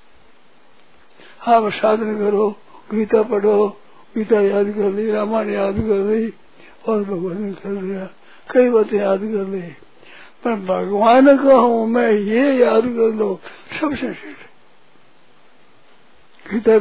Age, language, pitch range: 60-79, Hindi, 200-235 Hz